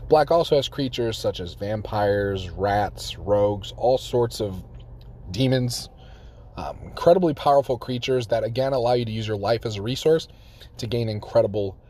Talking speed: 155 wpm